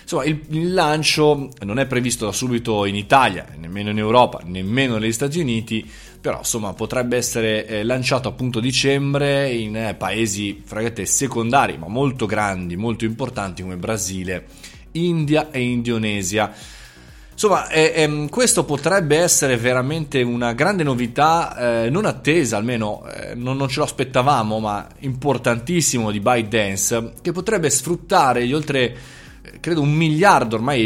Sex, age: male, 20-39